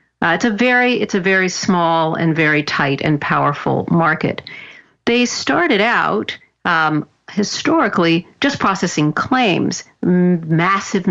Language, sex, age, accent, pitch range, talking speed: English, female, 50-69, American, 165-205 Hz, 125 wpm